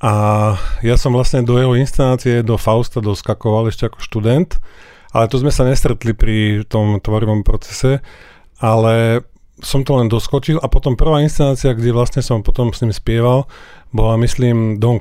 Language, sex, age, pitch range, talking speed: Slovak, male, 40-59, 110-130 Hz, 165 wpm